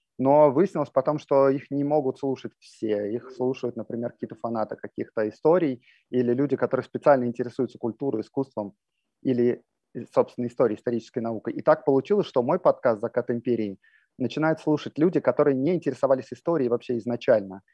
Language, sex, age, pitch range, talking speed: Russian, male, 30-49, 120-150 Hz, 150 wpm